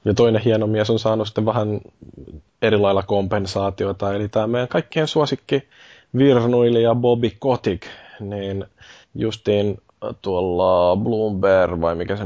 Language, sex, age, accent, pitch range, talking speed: Finnish, male, 20-39, native, 95-110 Hz, 120 wpm